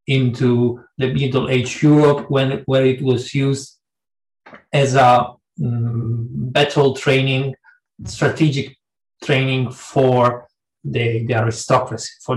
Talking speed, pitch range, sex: 105 wpm, 125-155 Hz, male